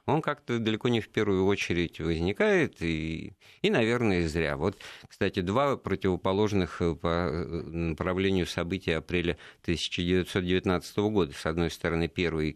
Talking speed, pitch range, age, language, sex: 125 wpm, 85-110 Hz, 50-69, Russian, male